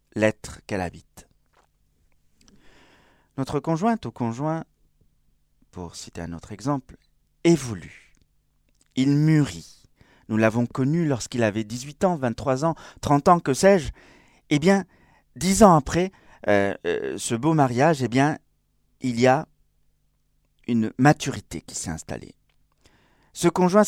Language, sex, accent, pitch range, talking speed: French, male, French, 105-160 Hz, 125 wpm